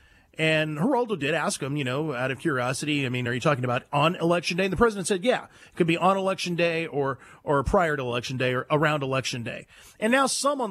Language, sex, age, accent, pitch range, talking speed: English, male, 40-59, American, 135-175 Hz, 245 wpm